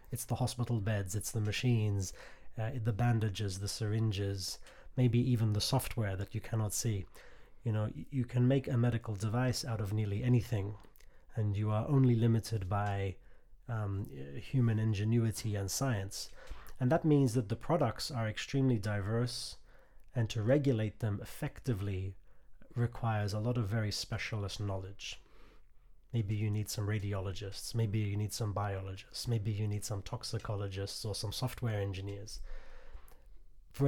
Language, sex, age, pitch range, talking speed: Swedish, male, 30-49, 105-120 Hz, 150 wpm